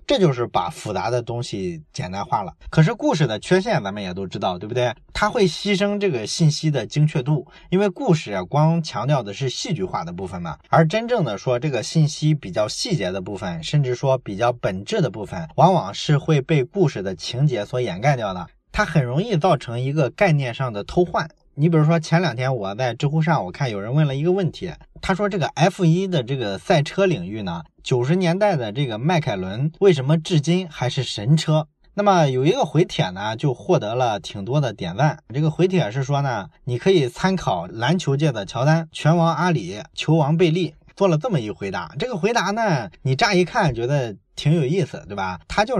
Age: 20-39